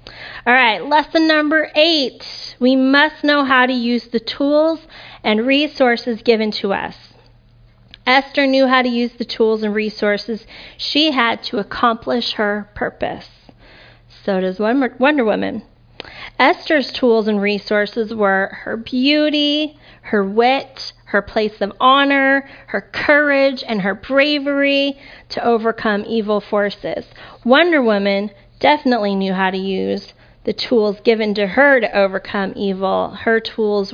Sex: female